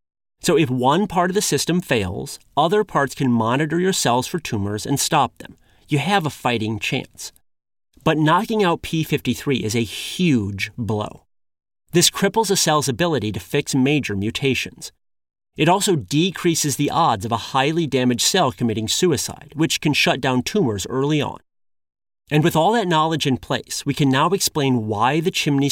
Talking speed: 175 wpm